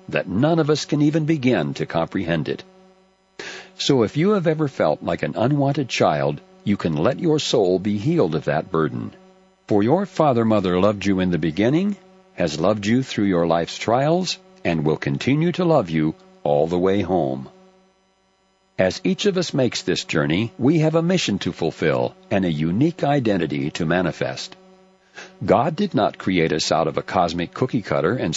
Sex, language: male, English